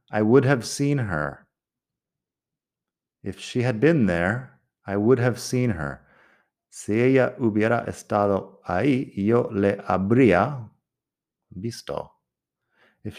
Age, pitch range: 30-49, 80-115 Hz